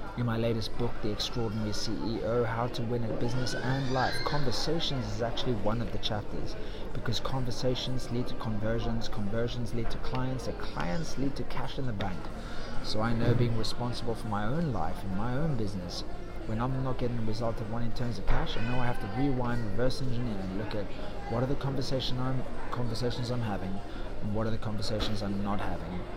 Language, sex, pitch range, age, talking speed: English, male, 105-125 Hz, 30-49, 205 wpm